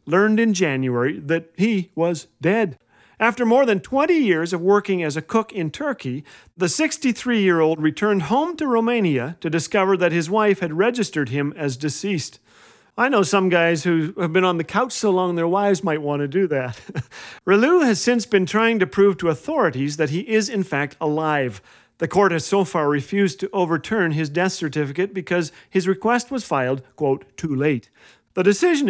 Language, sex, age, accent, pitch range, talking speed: English, male, 40-59, American, 150-210 Hz, 185 wpm